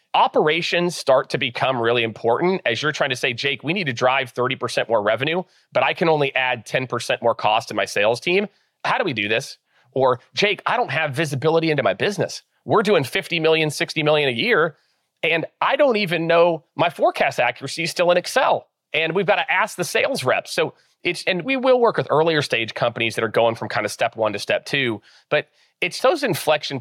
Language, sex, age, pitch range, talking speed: English, male, 30-49, 115-165 Hz, 220 wpm